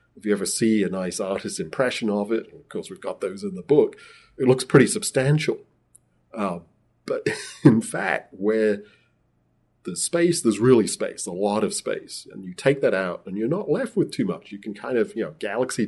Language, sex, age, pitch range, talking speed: English, male, 40-59, 95-135 Hz, 210 wpm